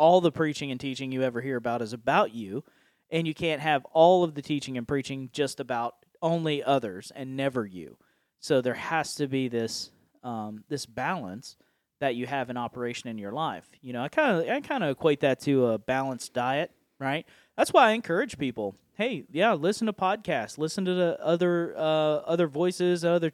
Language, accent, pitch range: English, American, 130-165 Hz